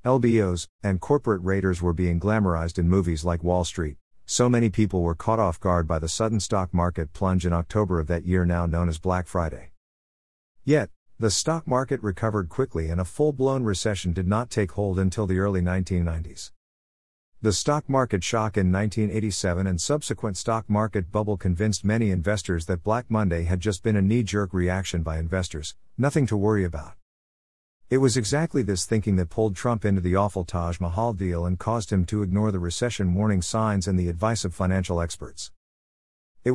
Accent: American